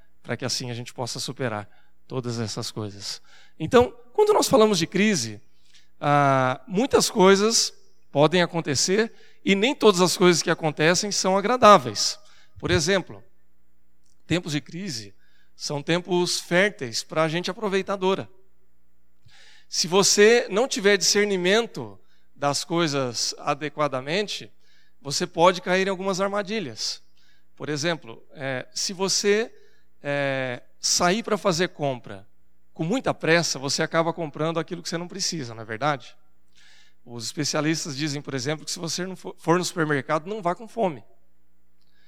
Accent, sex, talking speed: Brazilian, male, 135 wpm